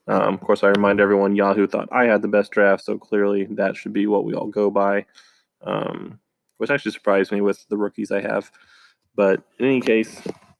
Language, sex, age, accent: English, male, 20-39, American